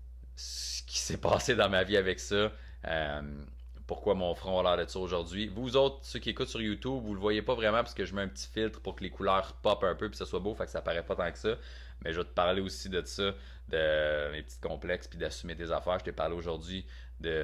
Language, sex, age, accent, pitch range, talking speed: French, male, 30-49, Canadian, 75-105 Hz, 270 wpm